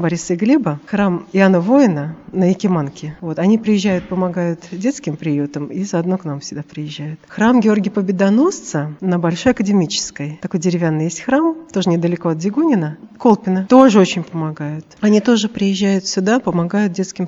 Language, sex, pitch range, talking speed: Russian, female, 170-210 Hz, 155 wpm